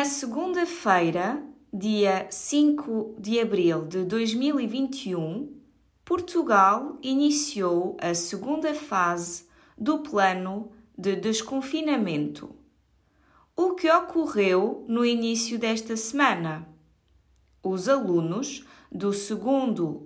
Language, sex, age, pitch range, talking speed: Portuguese, female, 20-39, 180-270 Hz, 85 wpm